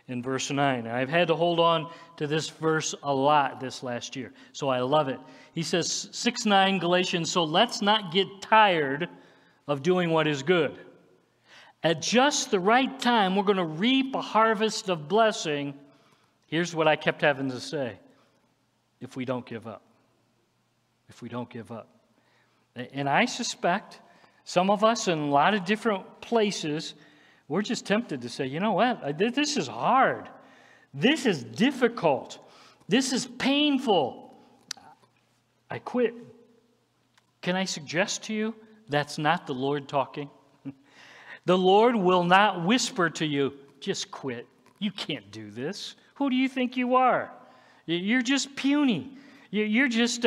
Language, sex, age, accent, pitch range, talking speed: English, male, 50-69, American, 145-235 Hz, 155 wpm